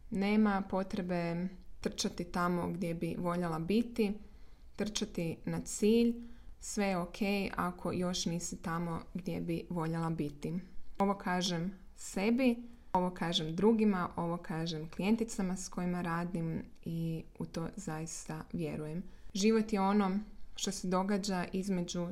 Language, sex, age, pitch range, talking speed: Croatian, female, 20-39, 175-225 Hz, 125 wpm